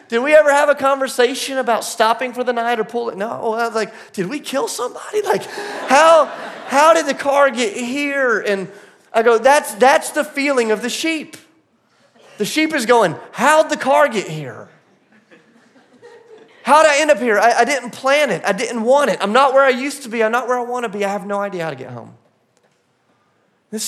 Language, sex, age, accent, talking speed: English, male, 30-49, American, 215 wpm